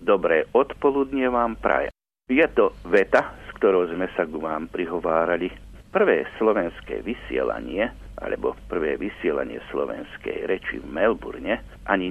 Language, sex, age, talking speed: Slovak, male, 60-79, 125 wpm